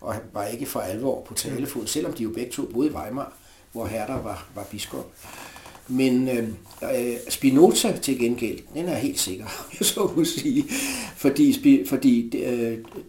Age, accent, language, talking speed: 60-79, native, Danish, 155 wpm